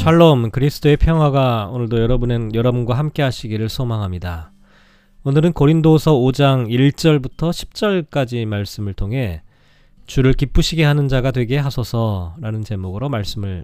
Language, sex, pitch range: Korean, male, 110-155 Hz